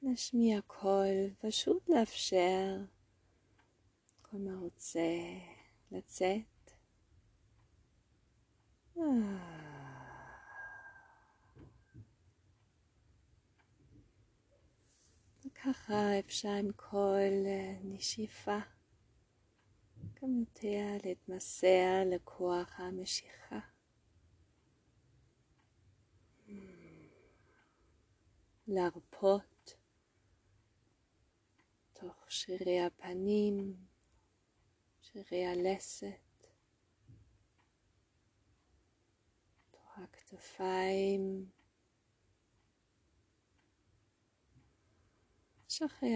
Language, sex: Hebrew, female